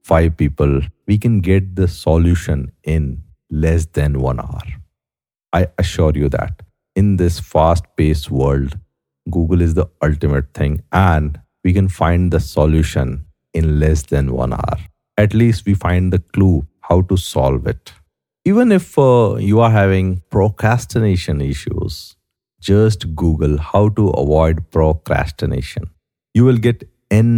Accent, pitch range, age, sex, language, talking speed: Indian, 80-105 Hz, 50-69, male, English, 140 wpm